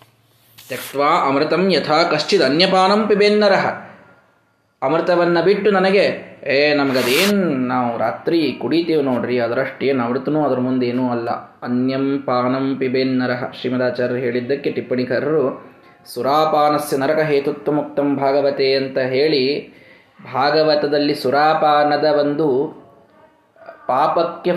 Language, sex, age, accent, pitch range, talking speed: Kannada, male, 20-39, native, 130-170 Hz, 85 wpm